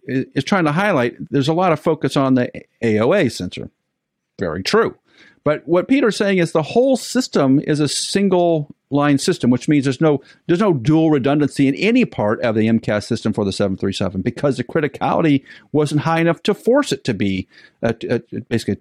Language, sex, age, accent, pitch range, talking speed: English, male, 50-69, American, 110-155 Hz, 190 wpm